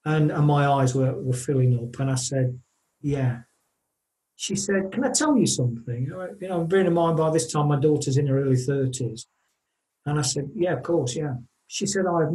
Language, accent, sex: English, British, male